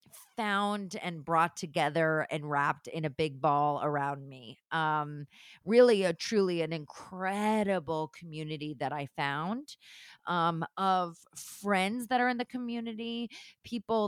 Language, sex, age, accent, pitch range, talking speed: English, female, 30-49, American, 160-200 Hz, 130 wpm